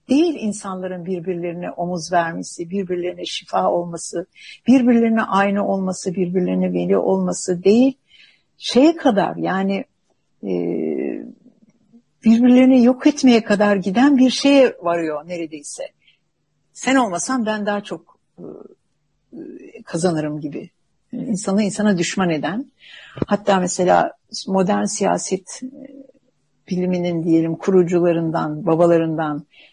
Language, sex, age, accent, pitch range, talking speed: Turkish, female, 60-79, native, 175-240 Hz, 100 wpm